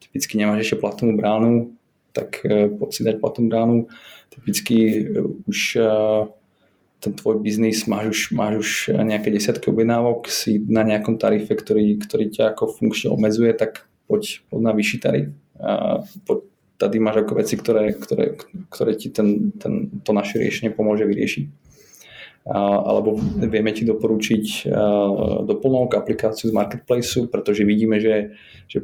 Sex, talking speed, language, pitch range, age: male, 140 wpm, Slovak, 105-115 Hz, 20-39